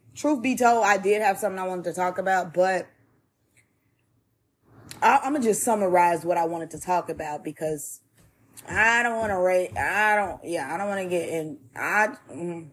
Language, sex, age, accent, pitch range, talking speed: English, female, 20-39, American, 130-210 Hz, 195 wpm